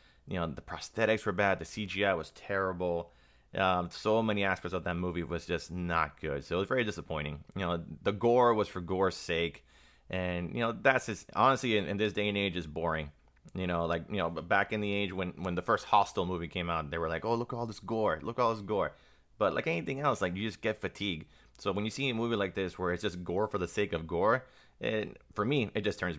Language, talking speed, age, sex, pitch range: English, 255 wpm, 30-49, male, 80-100 Hz